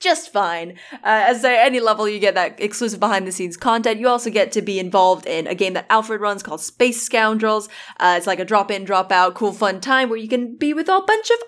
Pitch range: 205-295 Hz